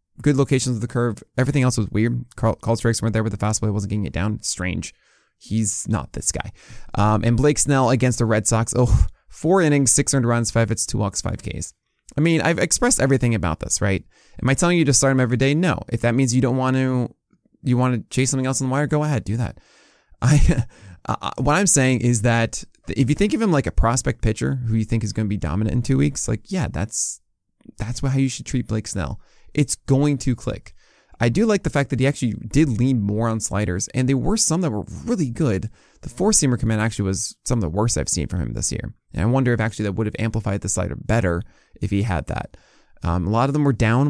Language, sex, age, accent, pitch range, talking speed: English, male, 20-39, American, 105-135 Hz, 250 wpm